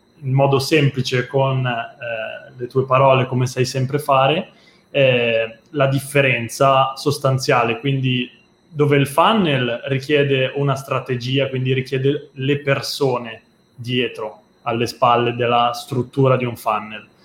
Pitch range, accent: 125-145 Hz, native